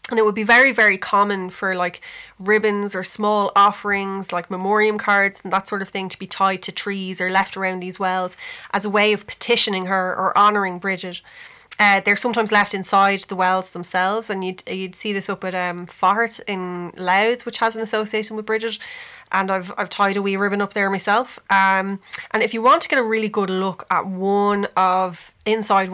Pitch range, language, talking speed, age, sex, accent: 185-210 Hz, English, 210 wpm, 20-39, female, Irish